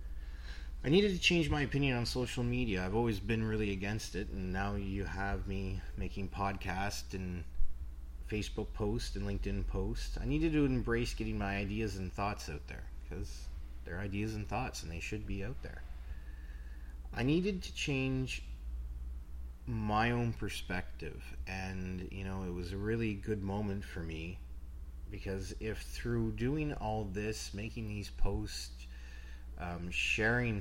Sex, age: male, 30-49